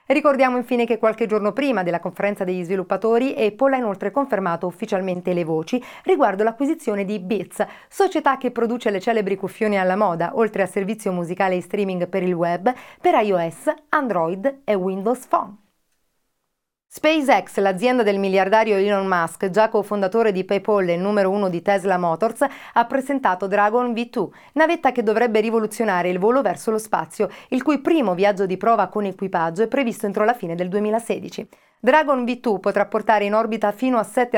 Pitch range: 190-245 Hz